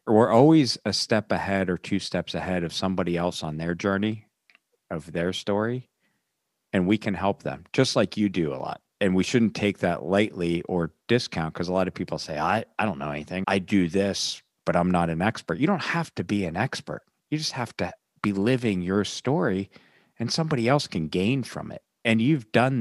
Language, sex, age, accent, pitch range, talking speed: English, male, 40-59, American, 80-100 Hz, 215 wpm